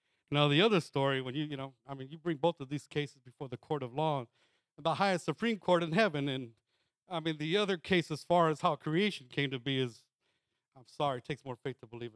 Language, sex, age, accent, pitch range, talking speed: English, male, 50-69, American, 140-195 Hz, 250 wpm